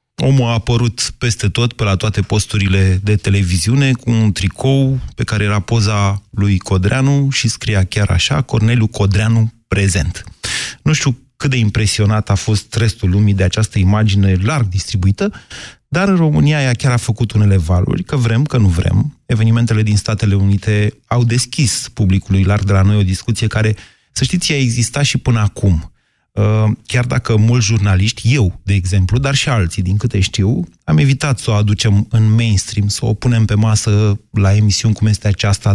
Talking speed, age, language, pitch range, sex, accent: 180 wpm, 30-49, Romanian, 100-125 Hz, male, native